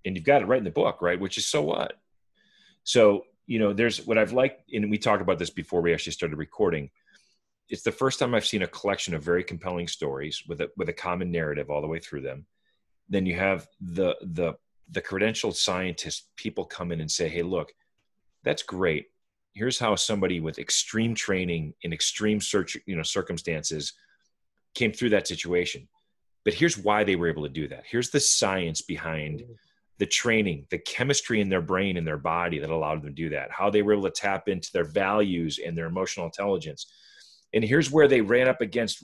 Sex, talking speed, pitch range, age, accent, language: male, 205 wpm, 85-110 Hz, 30-49, American, English